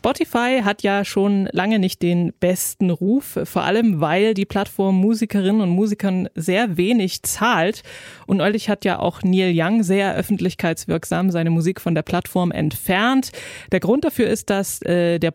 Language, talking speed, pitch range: German, 165 wpm, 175-215 Hz